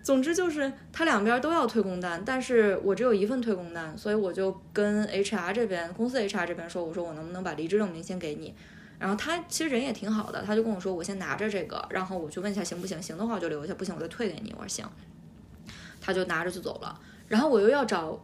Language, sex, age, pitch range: Chinese, female, 20-39, 180-245 Hz